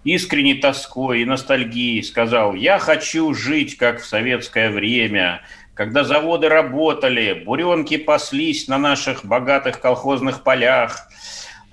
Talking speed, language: 115 wpm, Russian